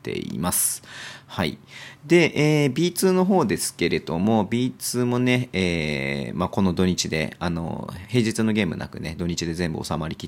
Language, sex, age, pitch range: Japanese, male, 30-49, 85-115 Hz